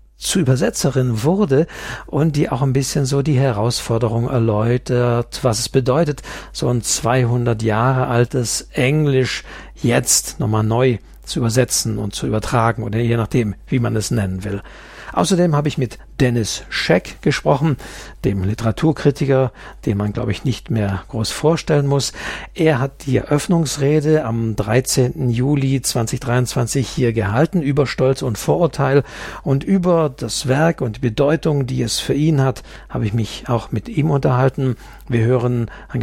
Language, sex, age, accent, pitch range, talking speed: German, male, 60-79, German, 115-145 Hz, 150 wpm